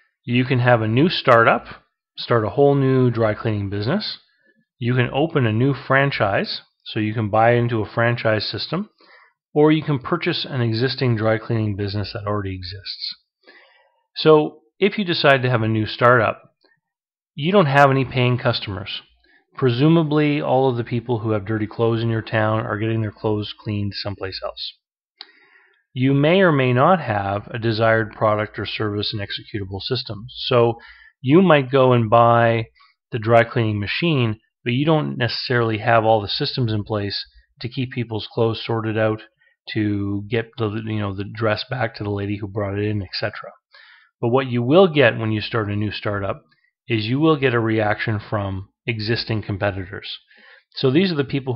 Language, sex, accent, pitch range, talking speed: English, male, American, 105-135 Hz, 180 wpm